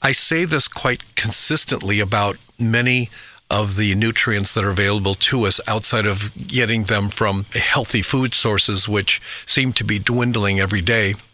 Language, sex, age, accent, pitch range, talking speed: English, male, 50-69, American, 100-120 Hz, 160 wpm